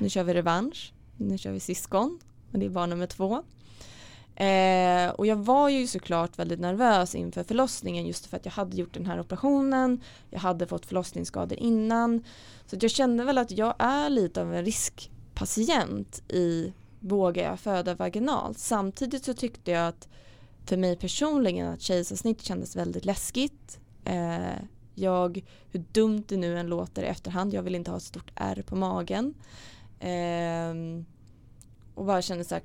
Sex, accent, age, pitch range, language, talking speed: female, Norwegian, 20-39, 160-205 Hz, Swedish, 165 wpm